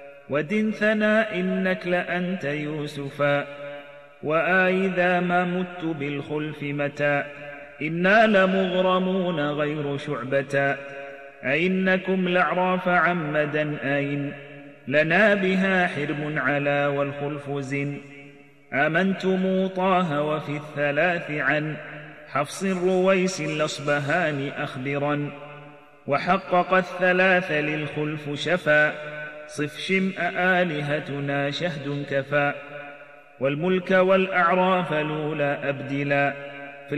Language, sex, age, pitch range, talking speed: Arabic, male, 30-49, 145-185 Hz, 75 wpm